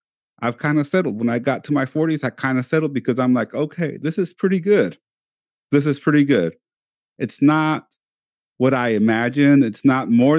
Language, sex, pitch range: English, male, 115-145 Hz